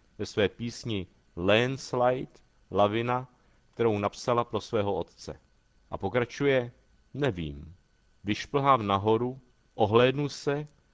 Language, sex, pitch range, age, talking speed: Czech, male, 100-135 Hz, 50-69, 95 wpm